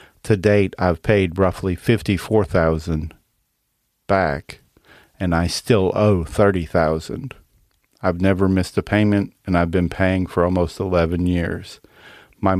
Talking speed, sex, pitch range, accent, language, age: 130 wpm, male, 85-95 Hz, American, English, 50-69